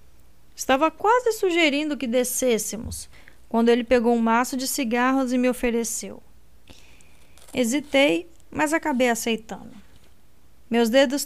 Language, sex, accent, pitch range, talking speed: Portuguese, female, Brazilian, 205-275 Hz, 110 wpm